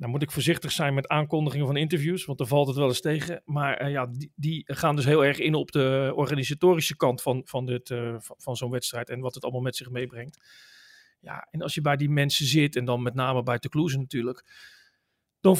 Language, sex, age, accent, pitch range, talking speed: Dutch, male, 40-59, Dutch, 140-175 Hz, 225 wpm